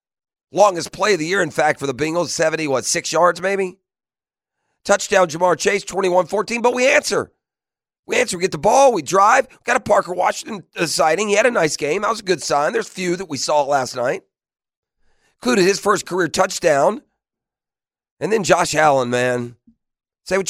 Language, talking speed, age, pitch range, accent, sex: English, 190 wpm, 40-59, 140-185 Hz, American, male